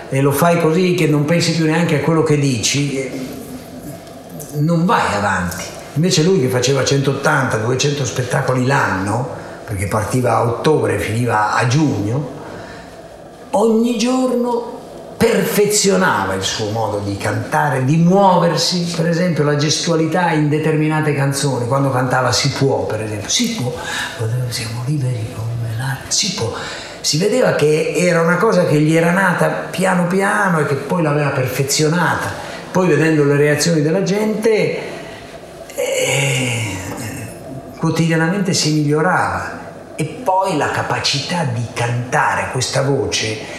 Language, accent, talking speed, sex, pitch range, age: Italian, native, 130 wpm, male, 130-170 Hz, 50-69